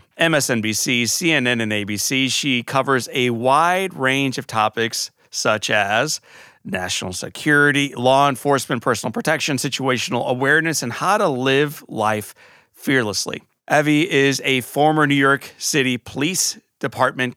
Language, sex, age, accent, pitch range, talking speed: English, male, 40-59, American, 115-145 Hz, 125 wpm